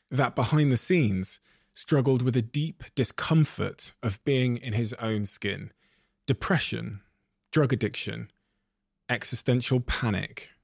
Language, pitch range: English, 115-150 Hz